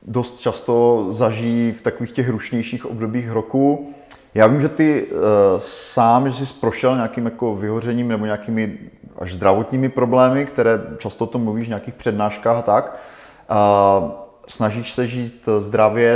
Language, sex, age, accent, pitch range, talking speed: Czech, male, 30-49, native, 105-120 Hz, 150 wpm